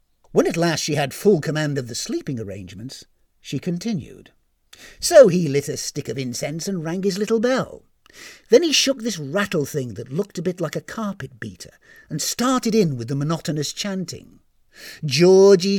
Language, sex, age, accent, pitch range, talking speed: English, male, 50-69, British, 145-220 Hz, 180 wpm